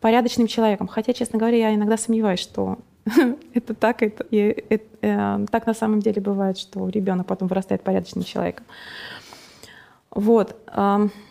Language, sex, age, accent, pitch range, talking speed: Russian, female, 20-39, native, 210-245 Hz, 140 wpm